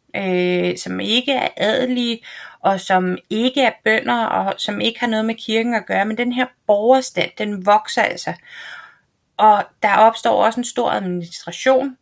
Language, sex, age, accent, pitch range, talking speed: Danish, female, 30-49, native, 180-230 Hz, 165 wpm